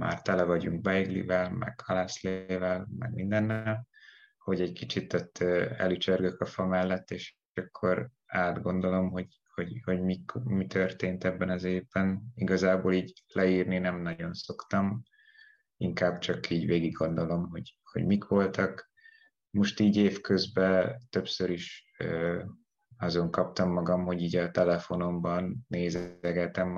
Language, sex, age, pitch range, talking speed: Hungarian, male, 20-39, 90-95 Hz, 125 wpm